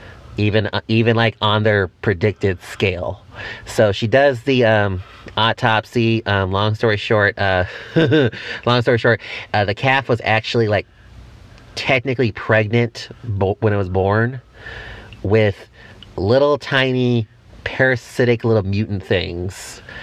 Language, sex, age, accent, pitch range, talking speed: English, male, 30-49, American, 105-120 Hz, 125 wpm